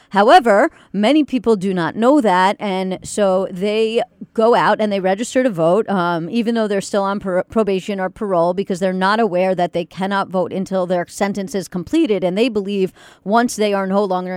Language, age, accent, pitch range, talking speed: English, 40-59, American, 185-230 Hz, 195 wpm